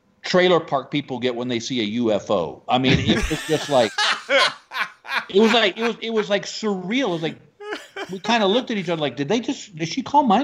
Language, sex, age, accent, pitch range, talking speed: English, male, 50-69, American, 125-180 Hz, 240 wpm